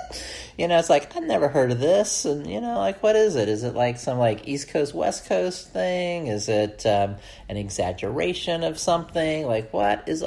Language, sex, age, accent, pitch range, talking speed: English, male, 40-59, American, 100-130 Hz, 210 wpm